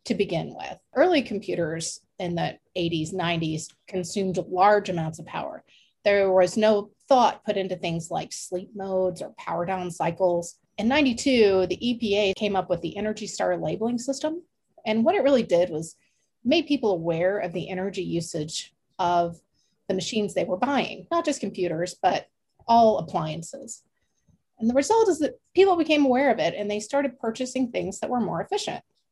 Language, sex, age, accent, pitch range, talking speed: English, female, 30-49, American, 180-250 Hz, 175 wpm